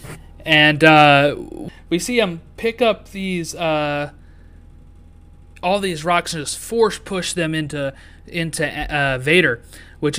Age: 20-39